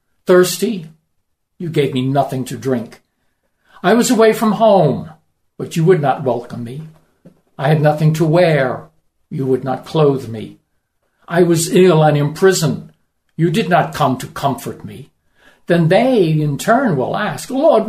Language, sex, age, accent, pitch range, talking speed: Ukrainian, male, 60-79, American, 135-190 Hz, 160 wpm